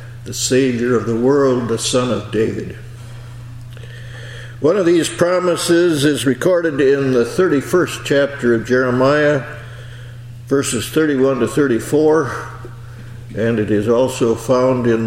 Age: 60-79